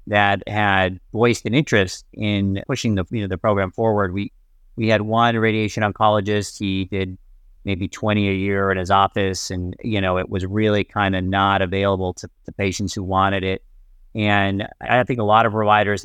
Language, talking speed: English, 190 wpm